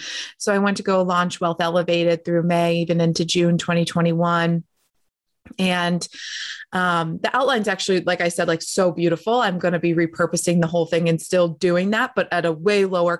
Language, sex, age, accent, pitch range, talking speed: English, female, 20-39, American, 170-210 Hz, 190 wpm